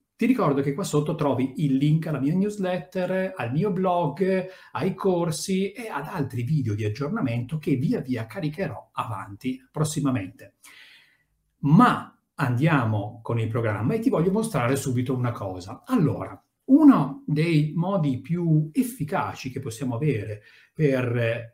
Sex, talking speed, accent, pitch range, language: male, 140 wpm, native, 125-185 Hz, Italian